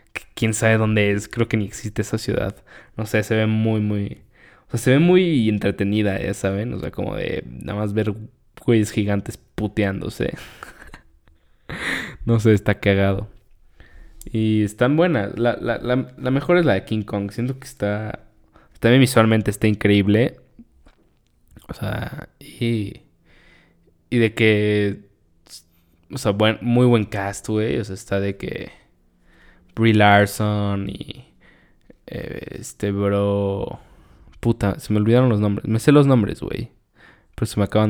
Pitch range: 100-115 Hz